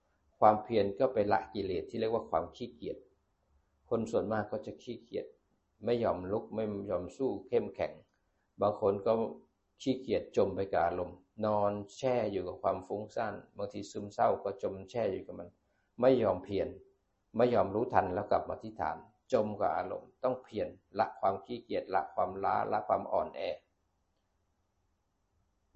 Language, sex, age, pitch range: Thai, male, 60-79, 90-120 Hz